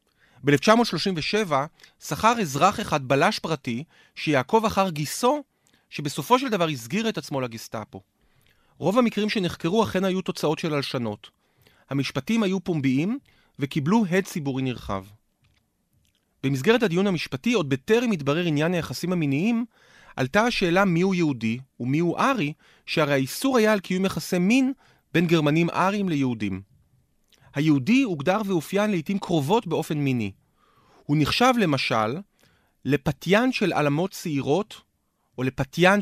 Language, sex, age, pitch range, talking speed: Hebrew, male, 30-49, 135-200 Hz, 120 wpm